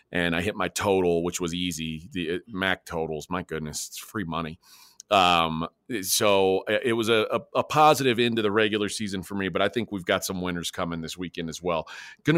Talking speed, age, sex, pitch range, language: 210 wpm, 40-59, male, 95-120 Hz, English